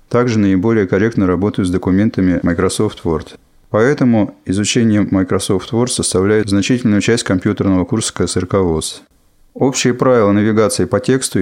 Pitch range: 95-115 Hz